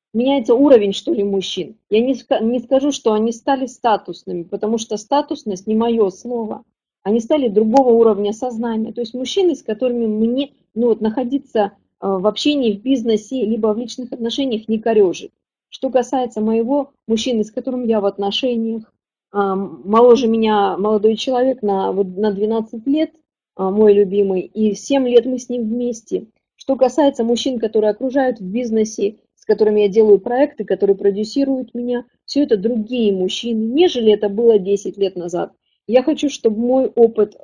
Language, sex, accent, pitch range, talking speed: Russian, female, native, 210-255 Hz, 155 wpm